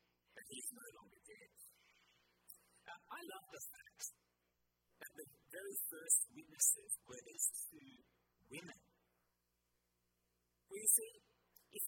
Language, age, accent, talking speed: English, 50-69, American, 115 wpm